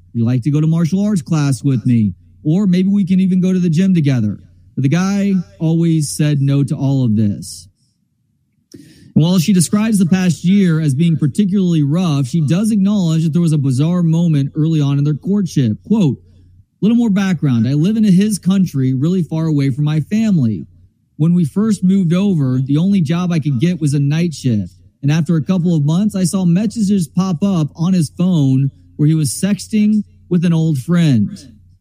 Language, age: English, 30-49